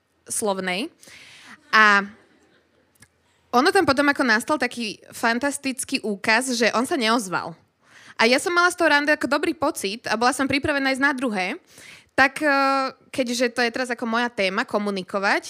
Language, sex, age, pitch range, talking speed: Slovak, female, 20-39, 210-270 Hz, 150 wpm